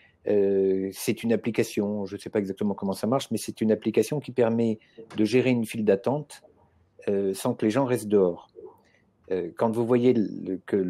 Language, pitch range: French, 95-115 Hz